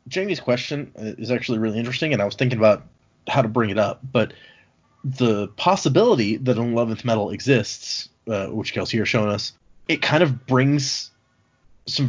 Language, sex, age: English, male, 30-49